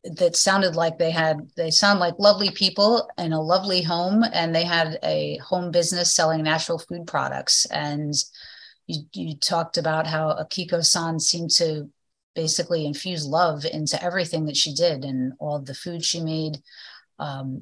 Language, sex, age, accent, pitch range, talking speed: English, female, 30-49, American, 145-175 Hz, 165 wpm